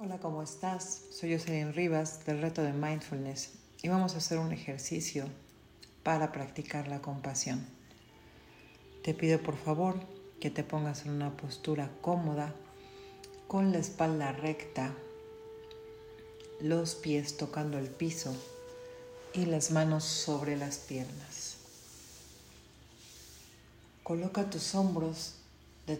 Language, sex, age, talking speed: Spanish, female, 40-59, 115 wpm